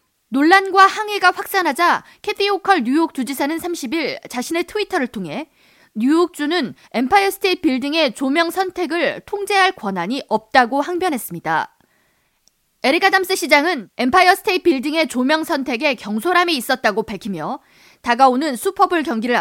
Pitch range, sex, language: 255-360 Hz, female, Korean